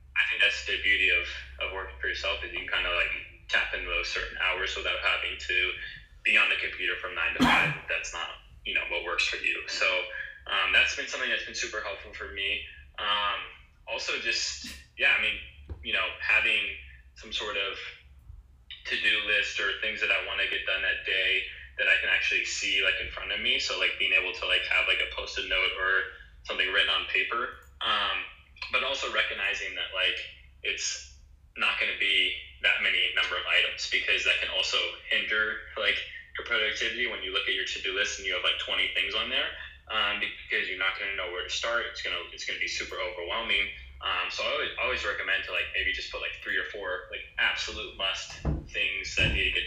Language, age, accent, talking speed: English, 20-39, American, 220 wpm